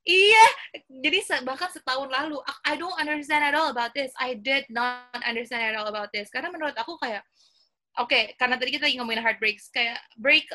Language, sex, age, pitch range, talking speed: Indonesian, female, 20-39, 250-345 Hz, 195 wpm